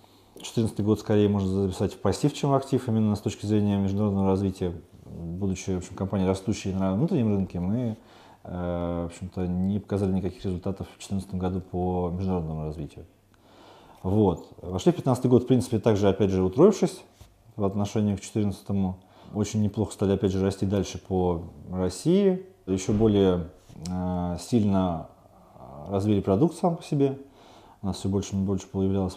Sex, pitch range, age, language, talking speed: male, 95-110 Hz, 30-49, Russian, 150 wpm